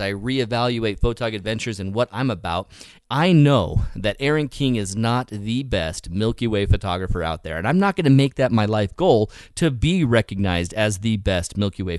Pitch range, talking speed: 100-125 Hz, 200 wpm